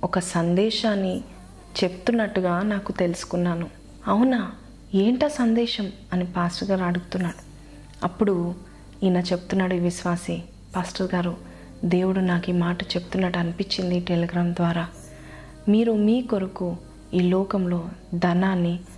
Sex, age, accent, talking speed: female, 20-39, native, 100 wpm